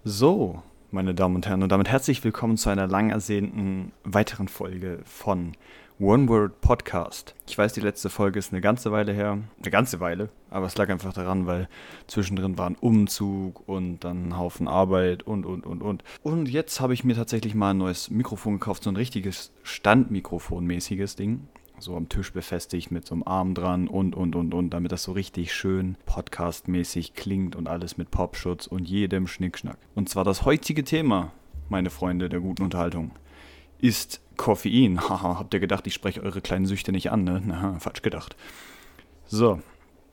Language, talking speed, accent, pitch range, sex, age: German, 180 wpm, German, 90-105 Hz, male, 30-49